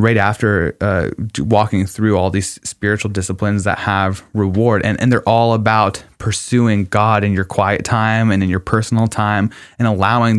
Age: 20-39